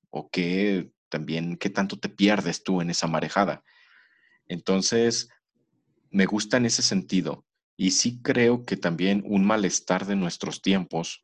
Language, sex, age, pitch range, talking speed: Spanish, male, 40-59, 90-105 Hz, 145 wpm